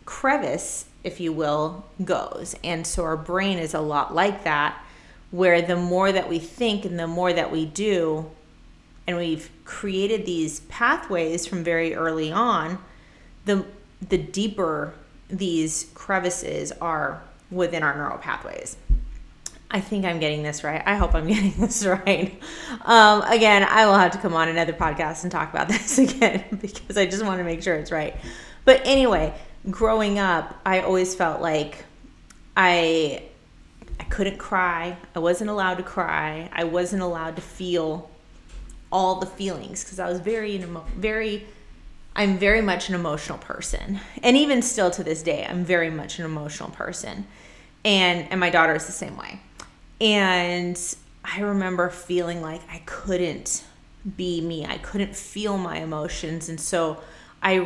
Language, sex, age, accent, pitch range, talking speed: English, female, 30-49, American, 165-200 Hz, 160 wpm